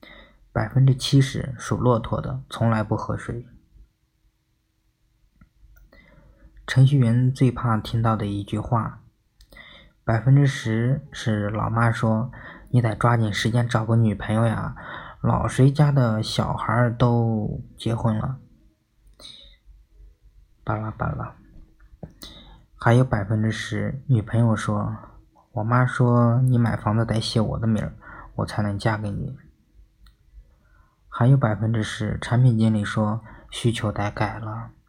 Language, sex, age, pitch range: Chinese, male, 20-39, 110-125 Hz